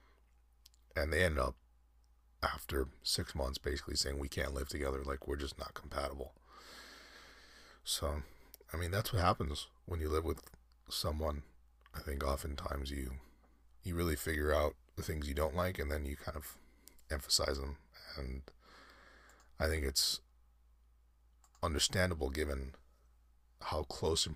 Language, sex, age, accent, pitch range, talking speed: English, male, 30-49, American, 65-80 Hz, 145 wpm